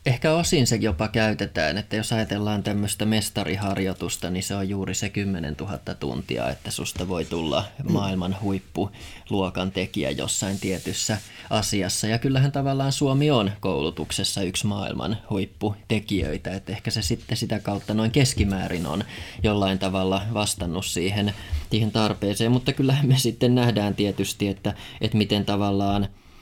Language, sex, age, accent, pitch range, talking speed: Finnish, male, 20-39, native, 95-105 Hz, 140 wpm